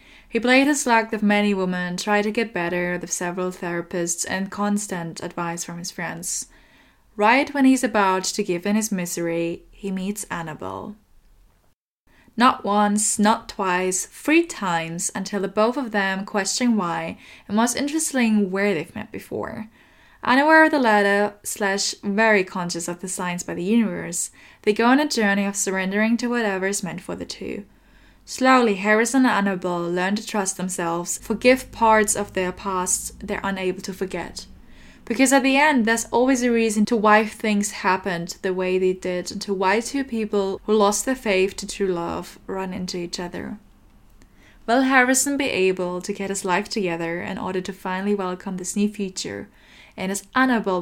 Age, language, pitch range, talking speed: 10-29, English, 185-225 Hz, 175 wpm